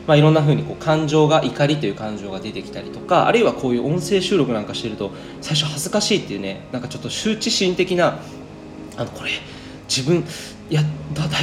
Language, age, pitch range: Japanese, 20-39, 105-165 Hz